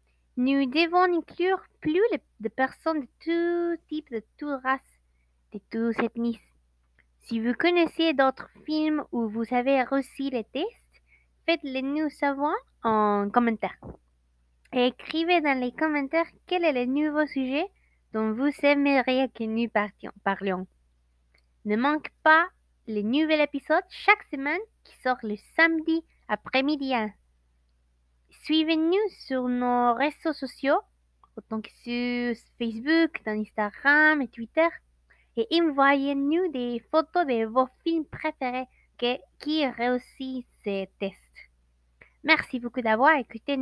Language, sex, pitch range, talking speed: French, female, 220-310 Hz, 125 wpm